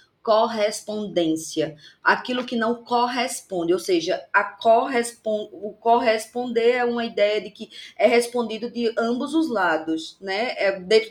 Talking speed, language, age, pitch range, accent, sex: 135 wpm, Portuguese, 20-39, 190-240 Hz, Brazilian, female